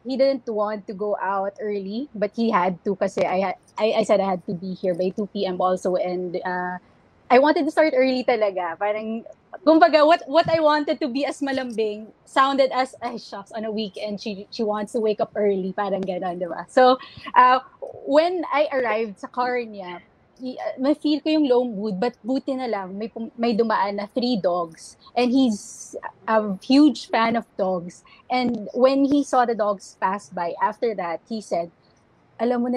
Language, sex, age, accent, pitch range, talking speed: Filipino, female, 20-39, native, 200-260 Hz, 185 wpm